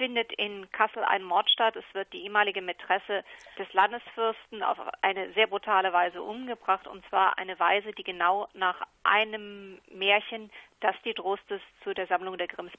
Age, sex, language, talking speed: 40-59, female, German, 170 wpm